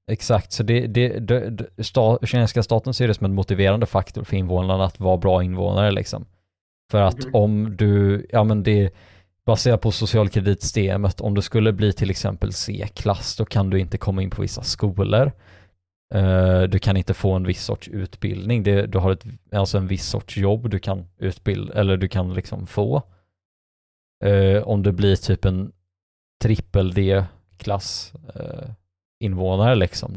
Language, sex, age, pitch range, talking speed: Swedish, male, 20-39, 95-110 Hz, 170 wpm